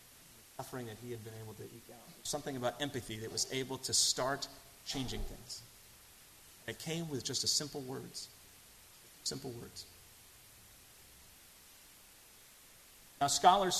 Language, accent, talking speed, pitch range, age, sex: English, American, 125 wpm, 110-135 Hz, 30-49, male